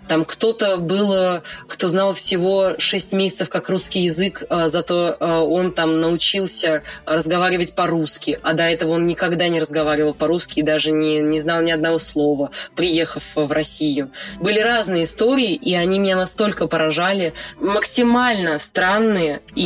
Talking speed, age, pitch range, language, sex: 145 wpm, 20-39, 170-205 Hz, Russian, female